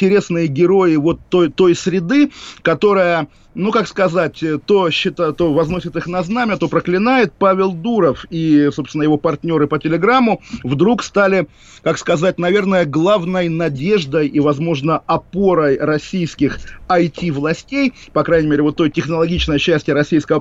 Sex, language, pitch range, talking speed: male, Russian, 145-180 Hz, 140 wpm